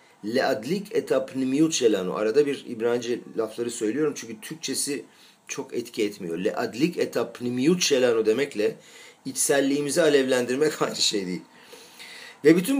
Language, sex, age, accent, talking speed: Turkish, male, 50-69, native, 135 wpm